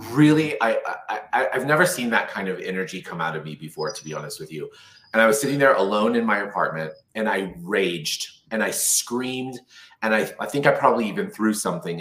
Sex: male